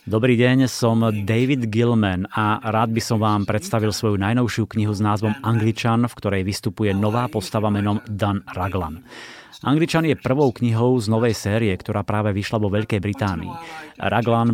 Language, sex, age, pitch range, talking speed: Slovak, male, 30-49, 105-125 Hz, 160 wpm